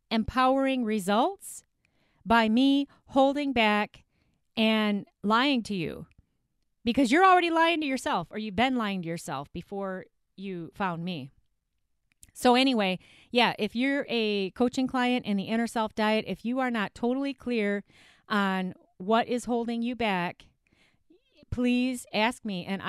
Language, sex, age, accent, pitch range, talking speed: English, female, 40-59, American, 210-275 Hz, 145 wpm